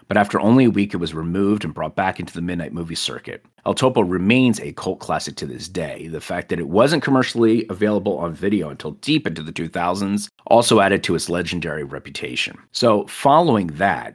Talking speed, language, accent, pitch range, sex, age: 205 wpm, English, American, 85-115 Hz, male, 40-59